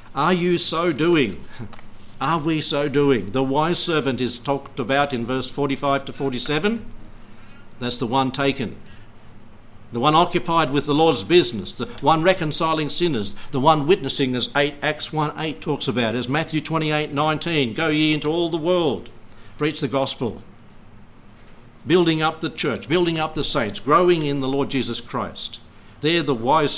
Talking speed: 160 wpm